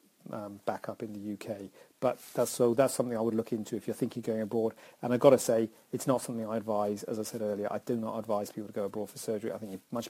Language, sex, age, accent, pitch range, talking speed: English, male, 40-59, British, 110-130 Hz, 285 wpm